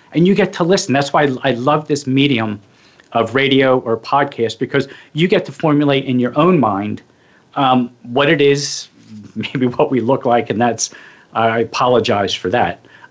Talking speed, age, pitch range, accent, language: 190 wpm, 40-59, 120-155 Hz, American, English